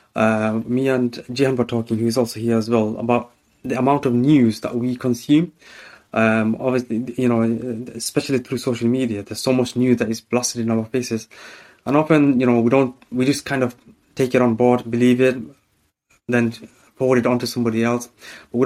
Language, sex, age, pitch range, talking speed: English, male, 20-39, 115-130 Hz, 205 wpm